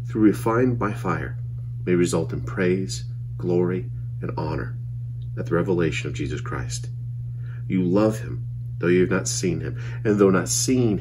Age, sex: 40-59, male